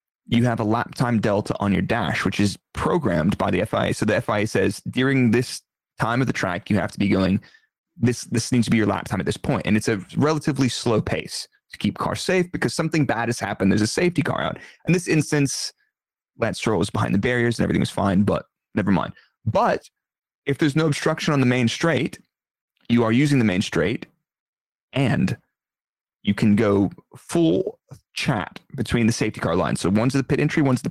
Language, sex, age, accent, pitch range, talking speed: English, male, 30-49, American, 110-150 Hz, 215 wpm